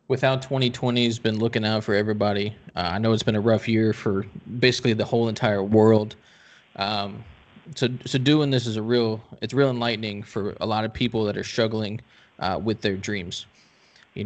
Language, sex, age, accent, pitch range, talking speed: English, male, 20-39, American, 105-120 Hz, 190 wpm